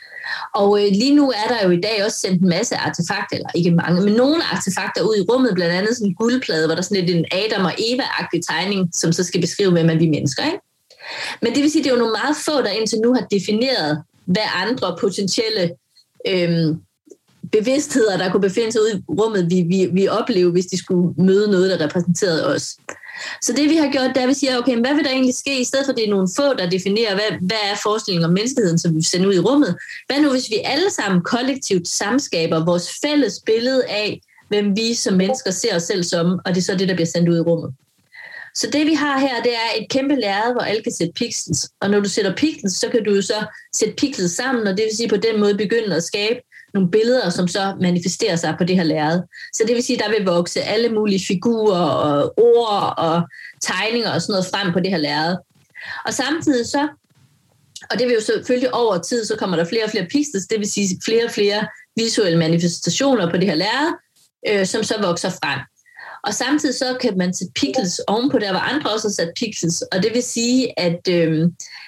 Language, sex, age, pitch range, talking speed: Danish, female, 20-39, 180-245 Hz, 230 wpm